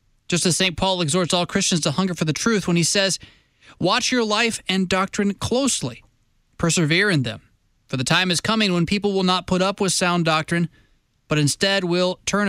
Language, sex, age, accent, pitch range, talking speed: English, male, 20-39, American, 150-210 Hz, 200 wpm